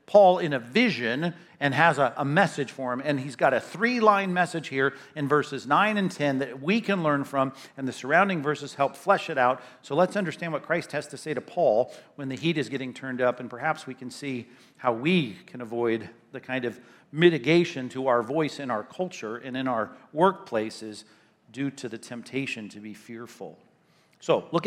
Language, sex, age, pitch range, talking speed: English, male, 50-69, 125-170 Hz, 205 wpm